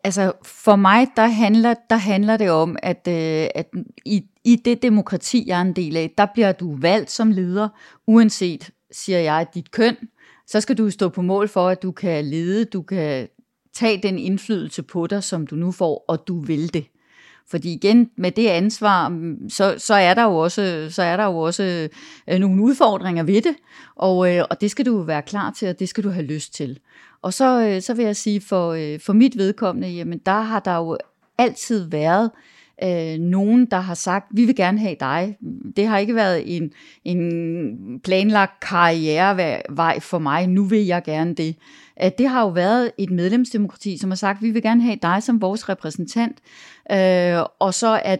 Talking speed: 195 wpm